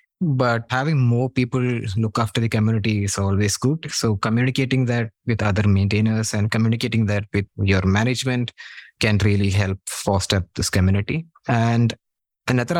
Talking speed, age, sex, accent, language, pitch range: 145 wpm, 20-39, male, Indian, English, 105-125 Hz